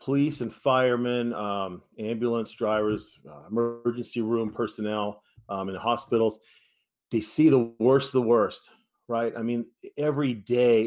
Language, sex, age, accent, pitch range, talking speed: English, male, 40-59, American, 110-130 Hz, 140 wpm